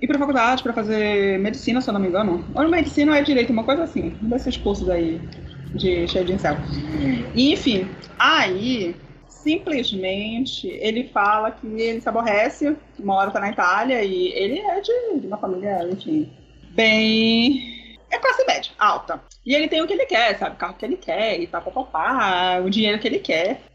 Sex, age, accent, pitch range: female, 20-39, Brazilian, 190-280 Hz